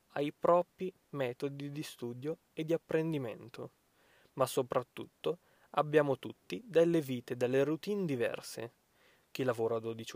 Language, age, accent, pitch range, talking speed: Italian, 20-39, native, 125-165 Hz, 120 wpm